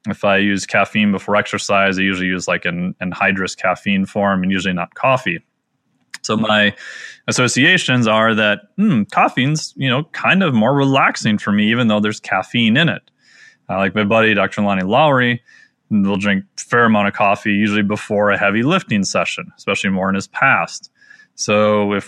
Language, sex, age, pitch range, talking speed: English, male, 20-39, 100-120 Hz, 180 wpm